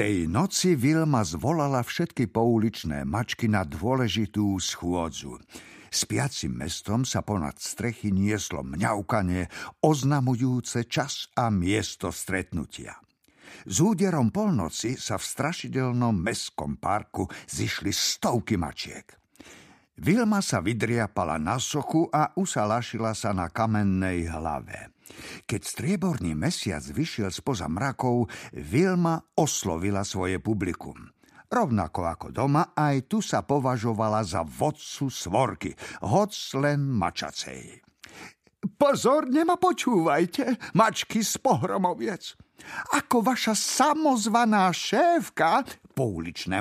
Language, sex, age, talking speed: Slovak, male, 60-79, 100 wpm